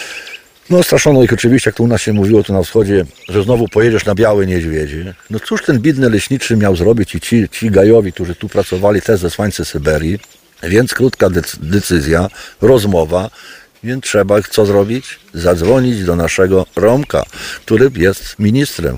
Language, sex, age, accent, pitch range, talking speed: Polish, male, 50-69, native, 85-120 Hz, 160 wpm